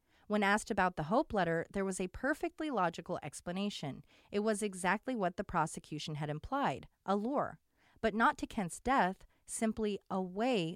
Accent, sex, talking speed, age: American, female, 160 wpm, 30-49